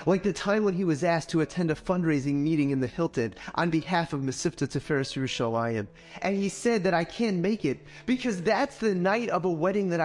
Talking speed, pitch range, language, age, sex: 225 wpm, 155-215 Hz, English, 30-49, male